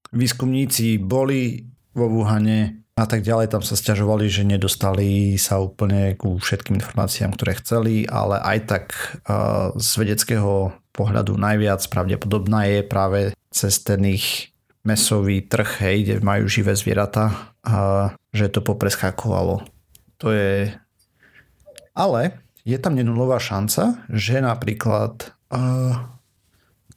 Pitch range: 100-115 Hz